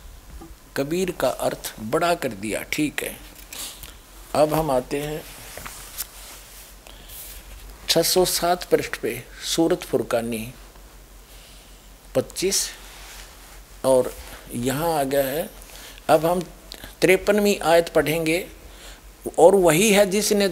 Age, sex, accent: 50-69, male, native